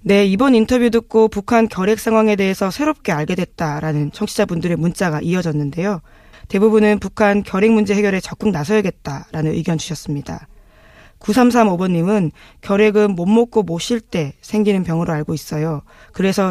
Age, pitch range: 20-39, 165-220 Hz